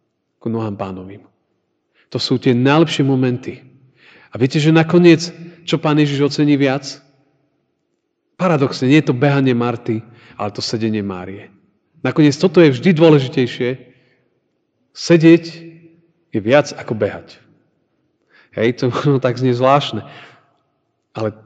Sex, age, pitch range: male, 40-59, 120-155 Hz